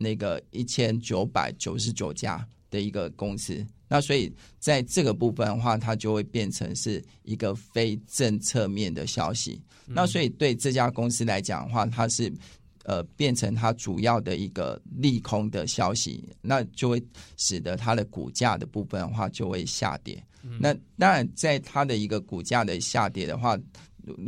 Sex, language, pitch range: male, Chinese, 105-125 Hz